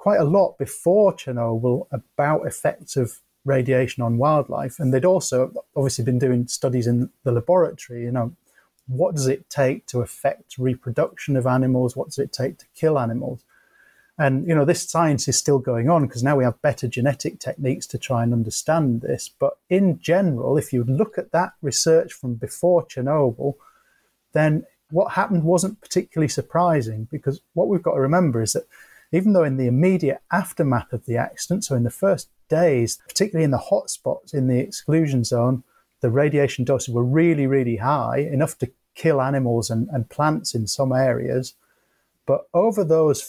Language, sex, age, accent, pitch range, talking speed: English, male, 30-49, British, 125-160 Hz, 180 wpm